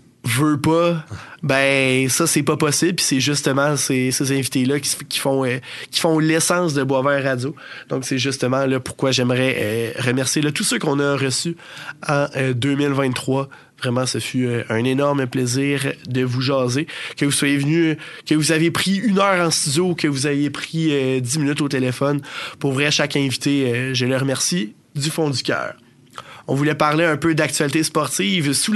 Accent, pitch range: Canadian, 135-160 Hz